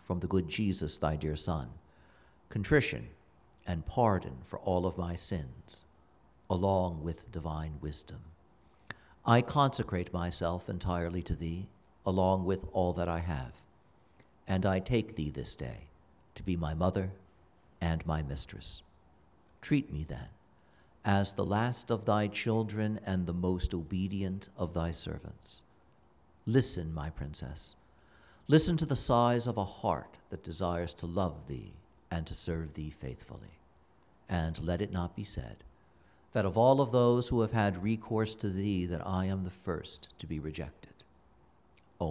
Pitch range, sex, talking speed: 80-105 Hz, male, 150 wpm